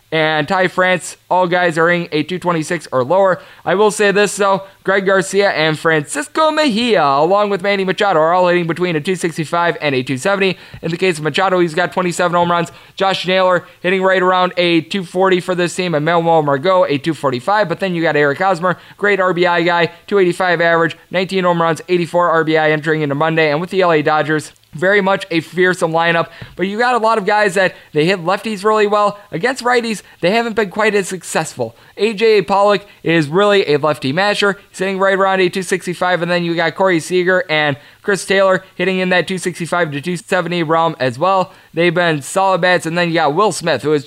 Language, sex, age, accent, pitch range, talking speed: English, male, 20-39, American, 155-190 Hz, 205 wpm